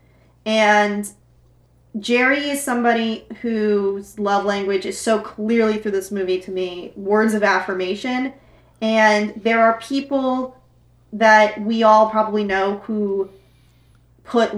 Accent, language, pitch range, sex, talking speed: American, English, 195-225 Hz, female, 120 wpm